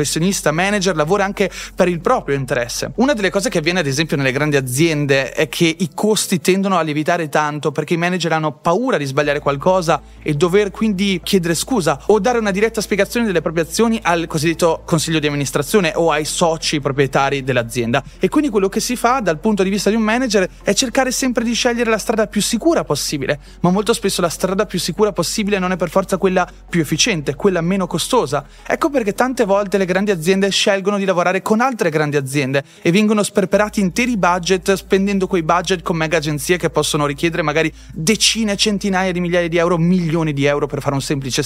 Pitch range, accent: 155-200 Hz, native